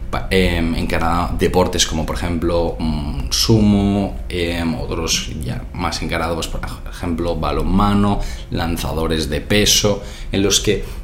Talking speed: 110 wpm